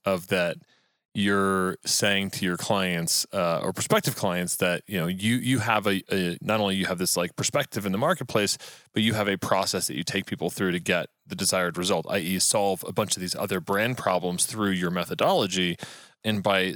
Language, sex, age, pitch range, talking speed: English, male, 30-49, 95-125 Hz, 210 wpm